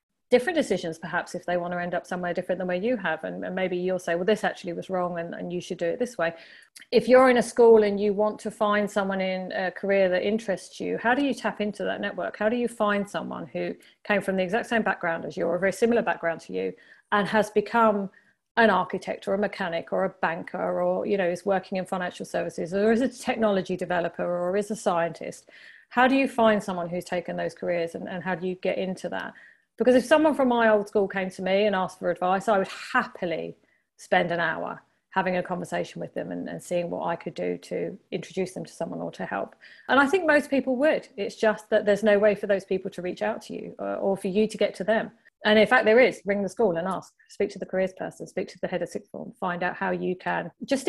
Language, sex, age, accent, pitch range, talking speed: English, female, 40-59, British, 180-215 Hz, 260 wpm